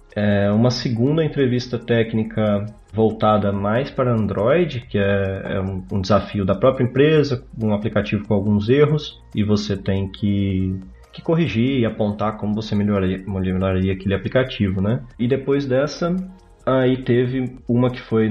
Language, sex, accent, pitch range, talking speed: Portuguese, male, Brazilian, 100-130 Hz, 140 wpm